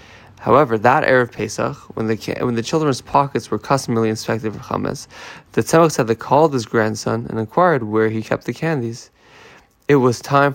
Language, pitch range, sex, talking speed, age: English, 110-150 Hz, male, 190 wpm, 20-39